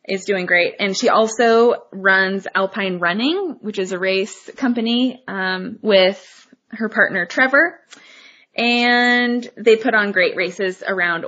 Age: 20-39